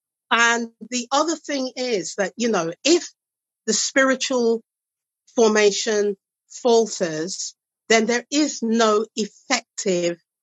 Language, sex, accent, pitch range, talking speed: English, female, British, 190-240 Hz, 105 wpm